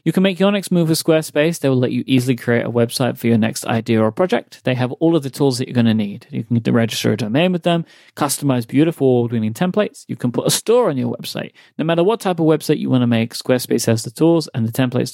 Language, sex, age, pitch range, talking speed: English, male, 30-49, 120-160 Hz, 280 wpm